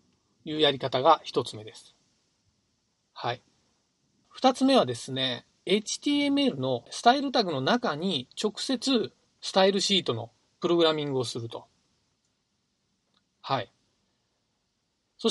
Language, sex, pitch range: Japanese, male, 140-225 Hz